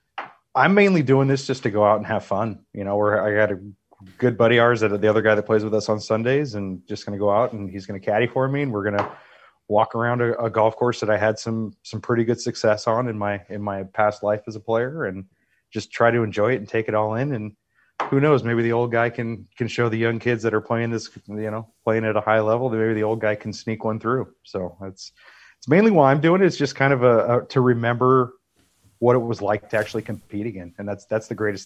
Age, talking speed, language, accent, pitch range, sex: 30-49, 275 wpm, English, American, 100-120 Hz, male